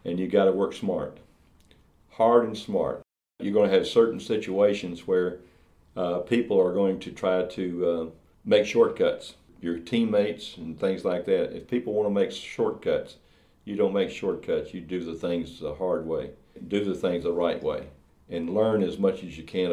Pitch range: 85-105 Hz